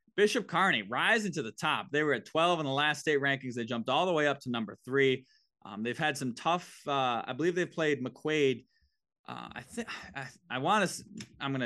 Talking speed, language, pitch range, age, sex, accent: 225 wpm, English, 115-155 Hz, 20-39, male, American